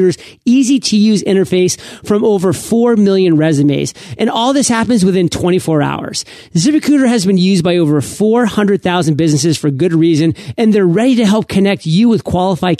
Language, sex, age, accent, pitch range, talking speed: English, male, 40-59, American, 160-210 Hz, 170 wpm